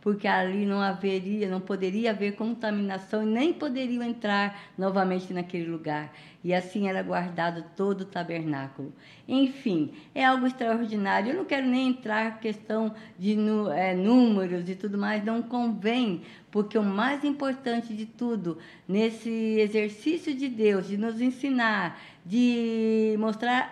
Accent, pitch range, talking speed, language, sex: Brazilian, 190-230 Hz, 140 wpm, Portuguese, female